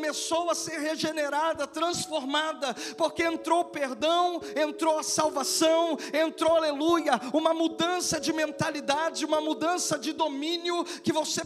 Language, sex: Portuguese, male